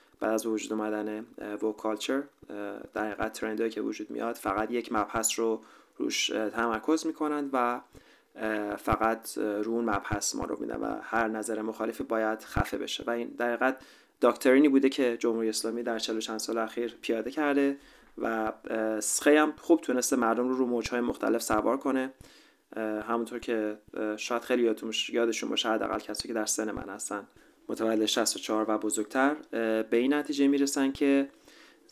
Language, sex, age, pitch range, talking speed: Persian, male, 30-49, 105-120 Hz, 155 wpm